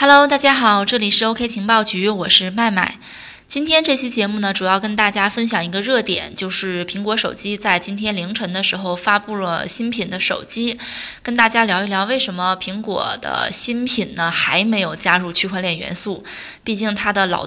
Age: 20-39